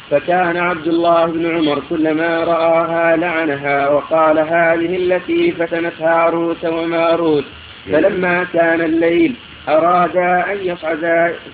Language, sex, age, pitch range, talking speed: Arabic, male, 50-69, 165-170 Hz, 105 wpm